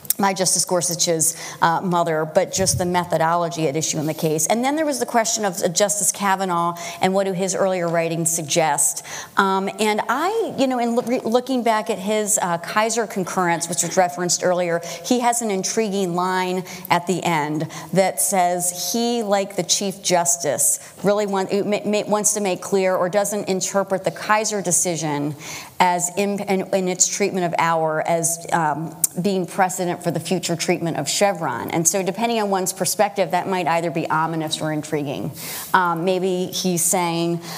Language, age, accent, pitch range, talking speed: English, 40-59, American, 170-195 Hz, 170 wpm